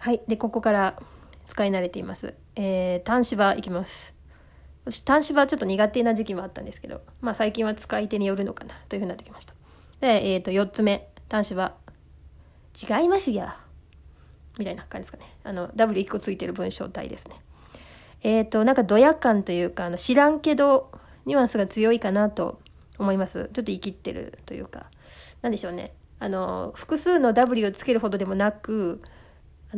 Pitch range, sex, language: 190-250 Hz, female, Japanese